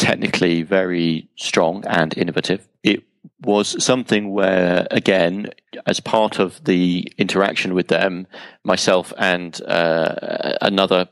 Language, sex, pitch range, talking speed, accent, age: English, male, 90-105 Hz, 115 wpm, British, 40-59